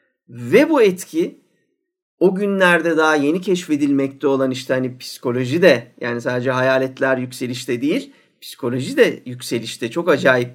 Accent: Turkish